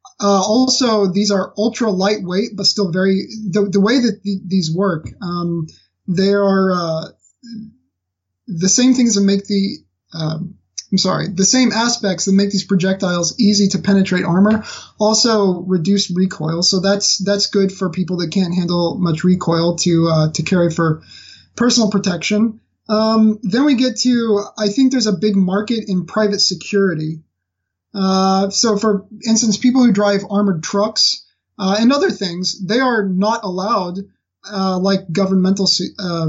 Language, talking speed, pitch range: English, 160 wpm, 180-210 Hz